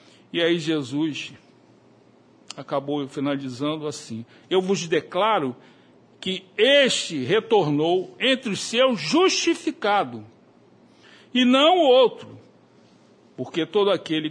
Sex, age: male, 60-79